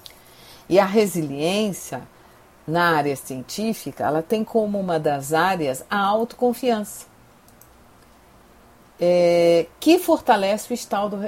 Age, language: 50-69, Portuguese